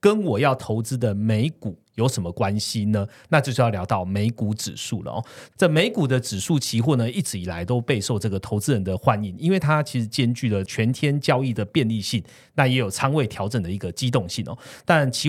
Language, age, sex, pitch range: Chinese, 30-49, male, 105-140 Hz